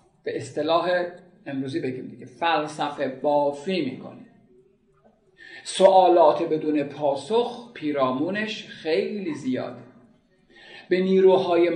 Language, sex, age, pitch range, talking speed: Persian, male, 50-69, 155-220 Hz, 80 wpm